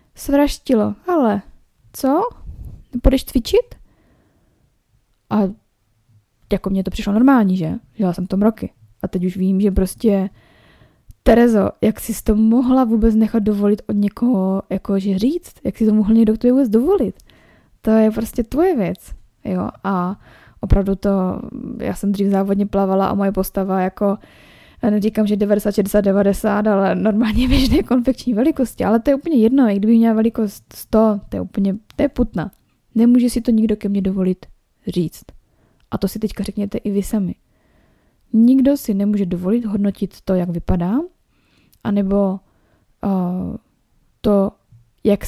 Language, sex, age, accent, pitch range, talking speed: Czech, female, 20-39, native, 195-230 Hz, 150 wpm